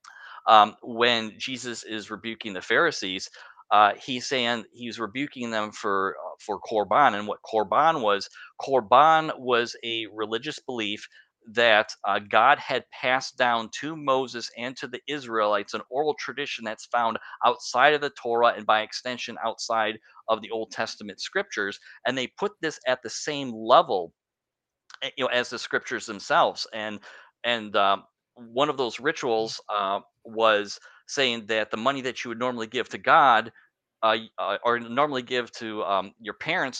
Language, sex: English, male